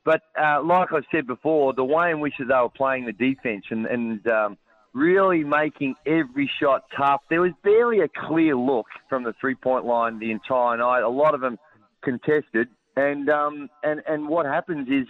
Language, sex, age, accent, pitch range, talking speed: English, male, 30-49, Australian, 125-155 Hz, 190 wpm